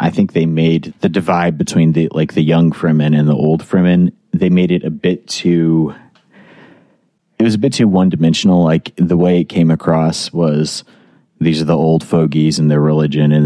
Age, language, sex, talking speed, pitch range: 30-49, English, male, 200 wpm, 75-85 Hz